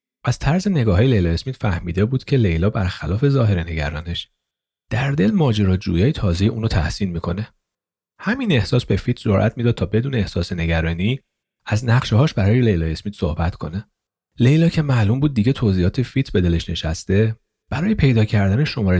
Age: 30-49